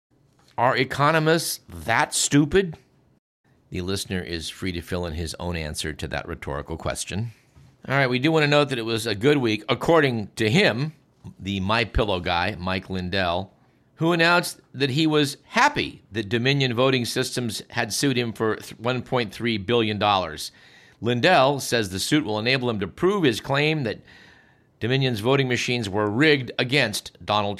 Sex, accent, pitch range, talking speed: male, American, 95-135 Hz, 165 wpm